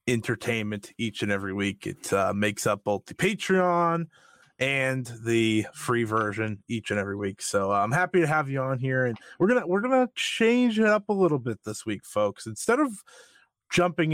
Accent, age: American, 20-39